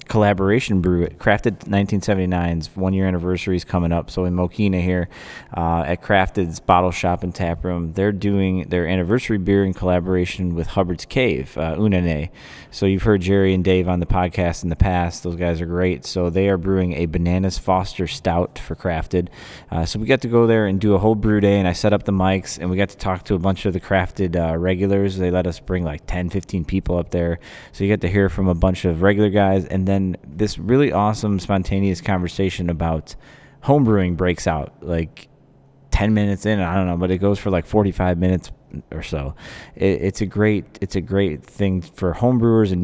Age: 20-39